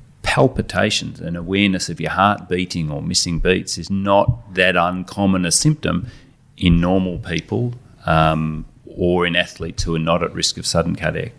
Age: 30-49